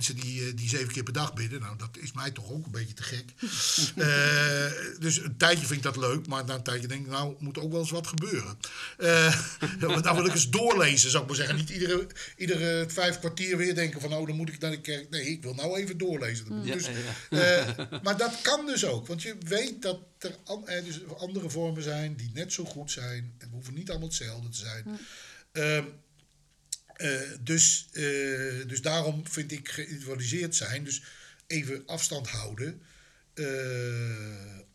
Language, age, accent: Dutch, 50-69, Dutch